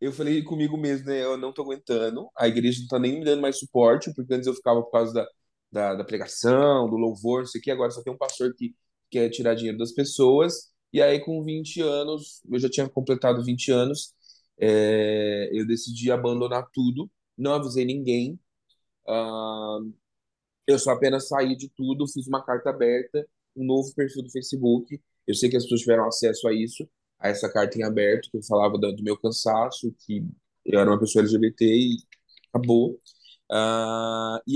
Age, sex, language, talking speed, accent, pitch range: 20-39, male, Portuguese, 195 wpm, Brazilian, 115-145 Hz